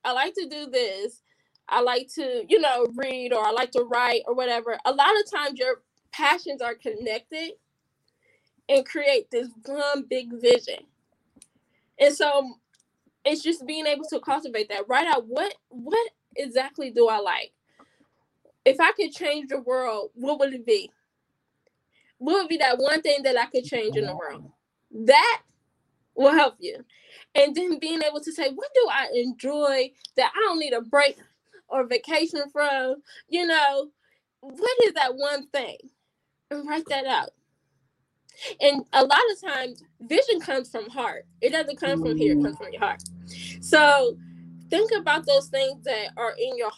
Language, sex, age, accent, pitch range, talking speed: English, female, 10-29, American, 250-330 Hz, 170 wpm